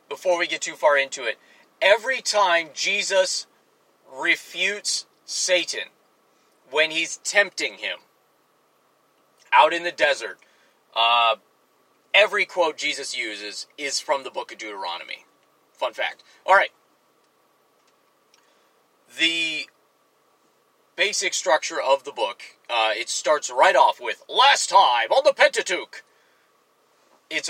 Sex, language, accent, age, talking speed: male, English, American, 30-49, 115 wpm